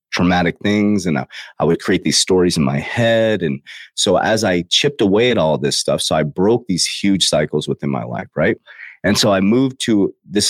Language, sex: English, male